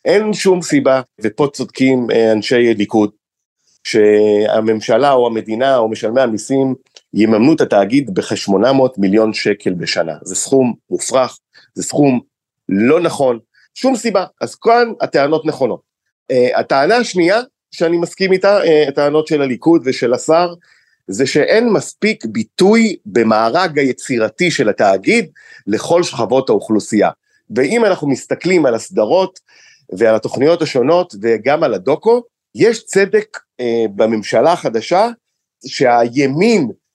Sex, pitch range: male, 120-190 Hz